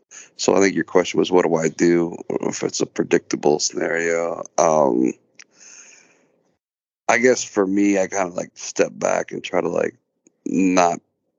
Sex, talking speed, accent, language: male, 165 wpm, American, English